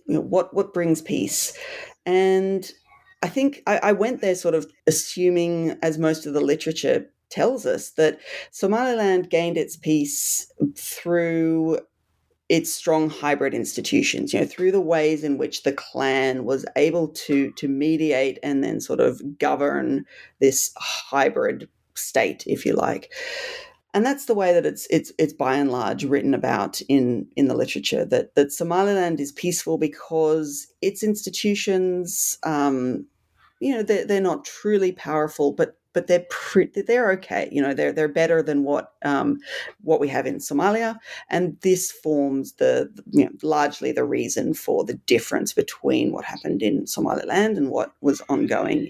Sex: female